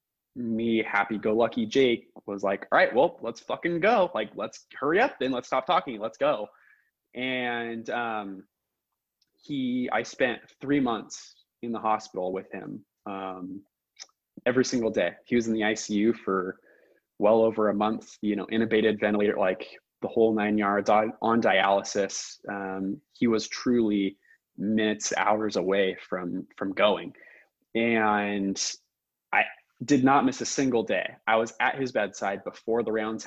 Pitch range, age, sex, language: 105-130 Hz, 20-39, male, English